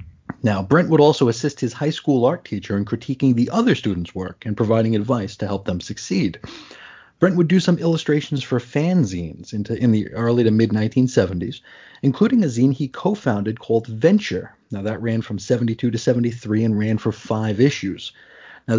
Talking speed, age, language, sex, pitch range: 175 wpm, 30-49, English, male, 110-150 Hz